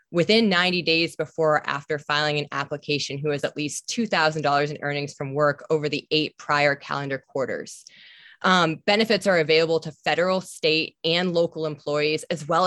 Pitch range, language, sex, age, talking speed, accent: 150-175 Hz, English, female, 20-39, 170 wpm, American